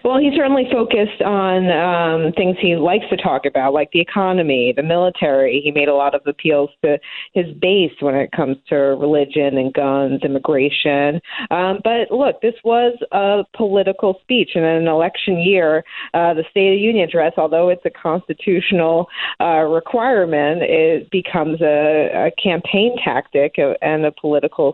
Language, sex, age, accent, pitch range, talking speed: English, female, 40-59, American, 145-175 Hz, 165 wpm